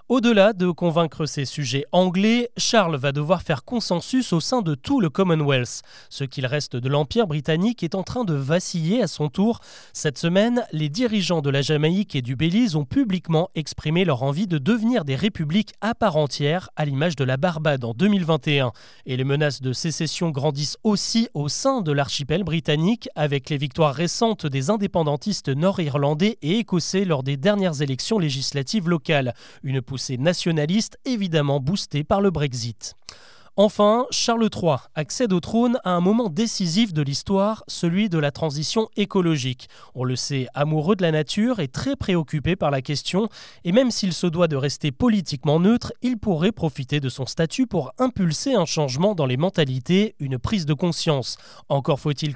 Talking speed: 175 wpm